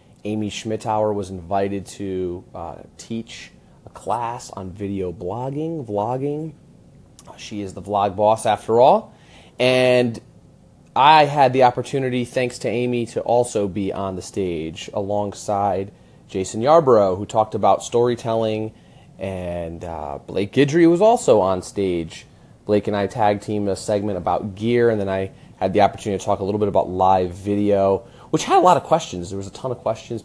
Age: 30-49